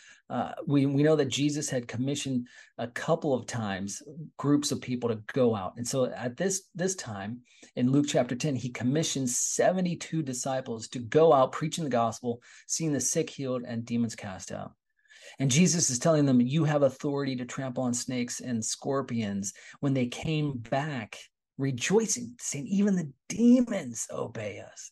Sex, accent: male, American